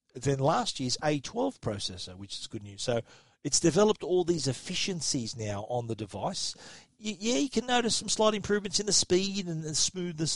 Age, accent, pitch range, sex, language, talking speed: 40-59, Australian, 120-155 Hz, male, English, 185 wpm